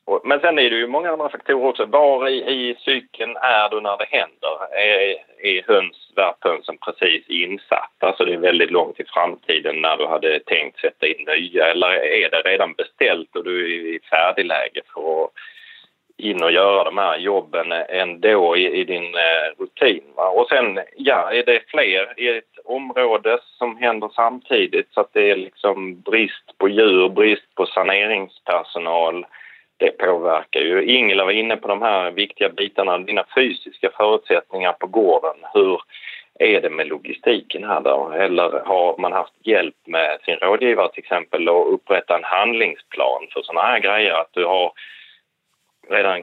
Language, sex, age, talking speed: Swedish, male, 30-49, 170 wpm